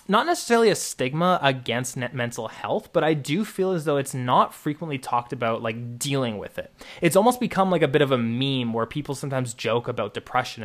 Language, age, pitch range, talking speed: English, 20-39, 125-170 Hz, 215 wpm